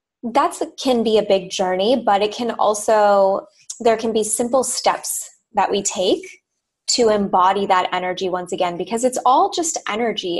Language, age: English, 20-39